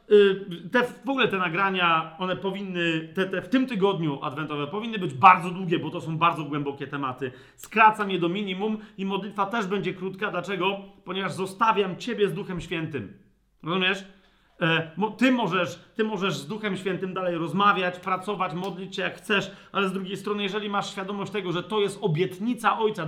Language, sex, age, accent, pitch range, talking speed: Polish, male, 40-59, native, 180-210 Hz, 175 wpm